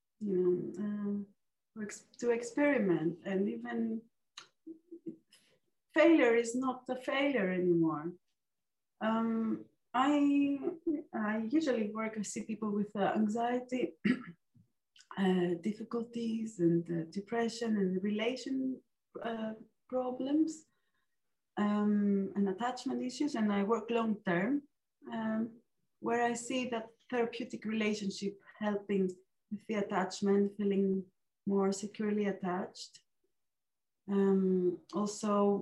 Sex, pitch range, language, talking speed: female, 195-235 Hz, English, 100 wpm